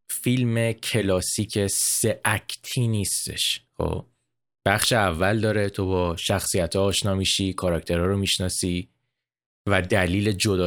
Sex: male